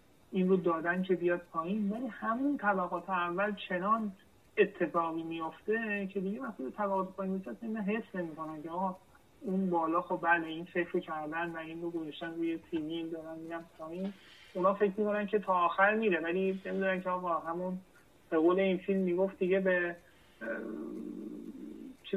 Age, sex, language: 30-49, male, Persian